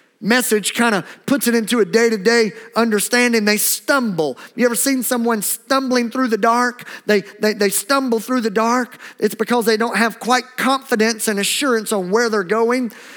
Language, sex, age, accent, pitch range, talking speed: English, male, 50-69, American, 190-230 Hz, 180 wpm